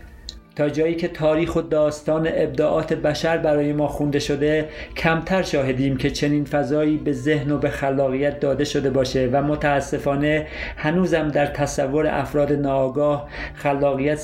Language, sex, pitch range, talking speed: Persian, male, 130-150 Hz, 140 wpm